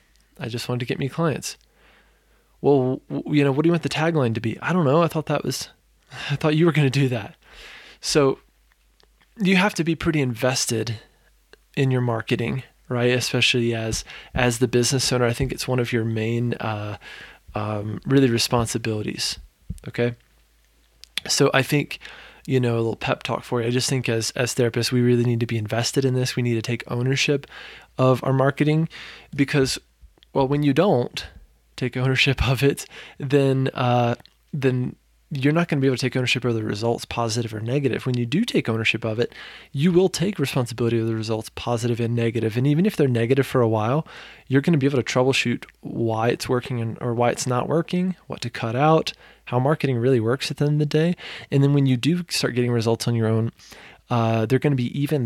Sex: male